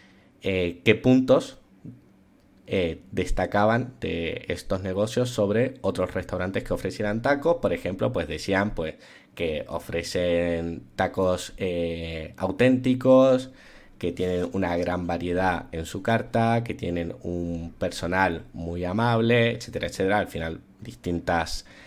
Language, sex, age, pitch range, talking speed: Spanish, male, 30-49, 85-115 Hz, 115 wpm